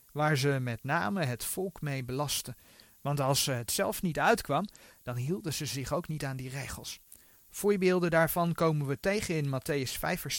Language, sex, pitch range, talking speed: Dutch, male, 130-175 Hz, 185 wpm